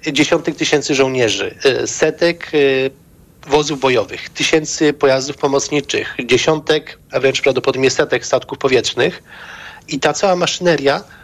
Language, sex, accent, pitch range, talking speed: Polish, male, native, 145-175 Hz, 105 wpm